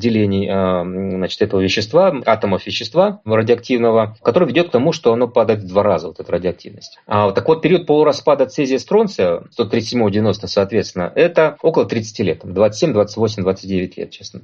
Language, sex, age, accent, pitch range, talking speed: Russian, male, 30-49, native, 110-155 Hz, 140 wpm